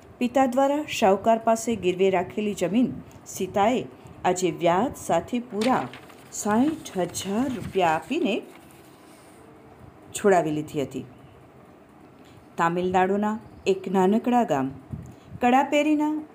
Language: Hindi